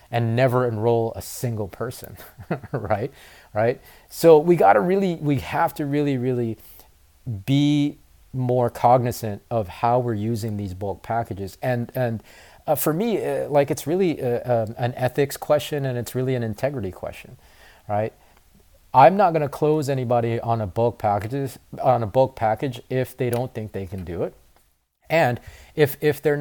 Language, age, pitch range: English, 30-49, 110-135 Hz